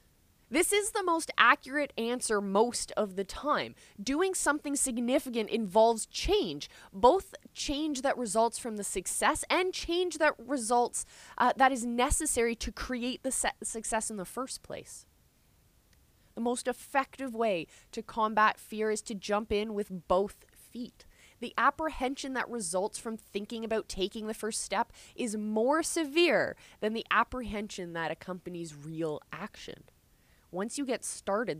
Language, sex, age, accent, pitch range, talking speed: English, female, 20-39, American, 205-270 Hz, 145 wpm